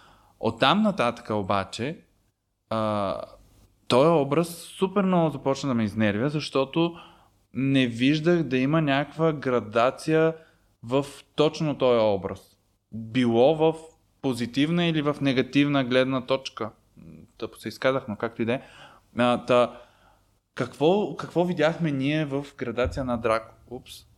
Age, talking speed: 20-39, 115 wpm